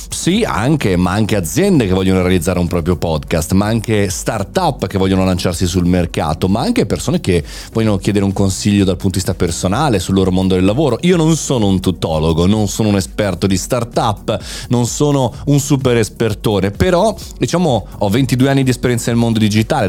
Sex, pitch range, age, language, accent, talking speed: male, 95-135 Hz, 30-49, Italian, native, 185 wpm